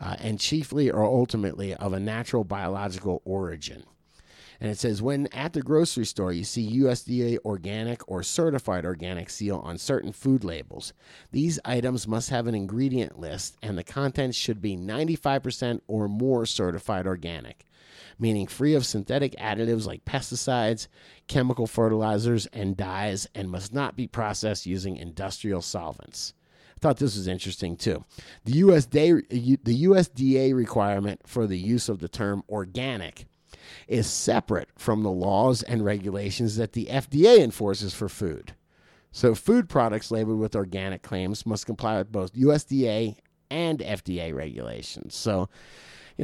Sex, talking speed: male, 145 wpm